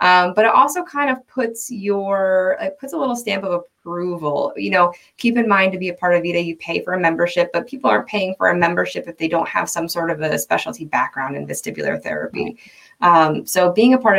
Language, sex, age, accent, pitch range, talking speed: English, female, 20-39, American, 155-185 Hz, 235 wpm